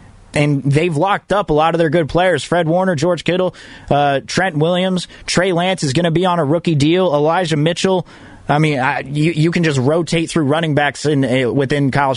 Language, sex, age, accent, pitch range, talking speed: English, male, 30-49, American, 125-170 Hz, 215 wpm